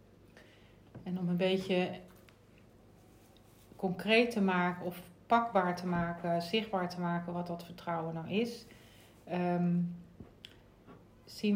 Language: Dutch